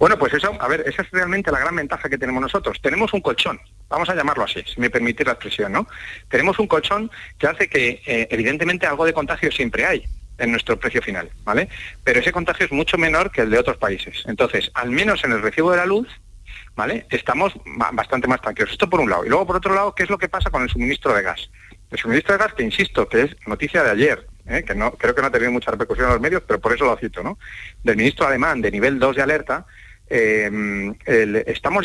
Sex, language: male, Spanish